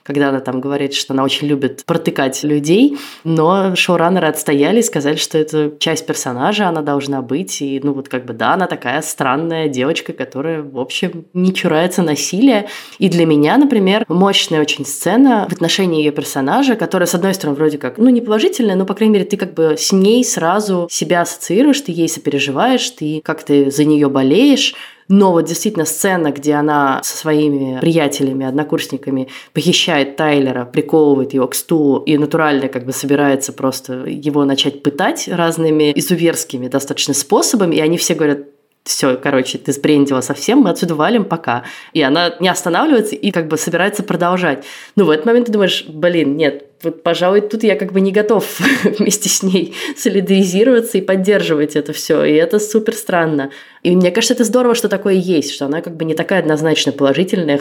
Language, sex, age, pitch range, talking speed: Russian, female, 20-39, 145-195 Hz, 180 wpm